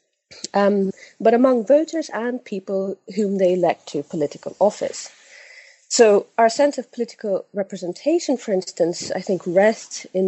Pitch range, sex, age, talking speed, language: 170-235 Hz, female, 30-49, 140 wpm, English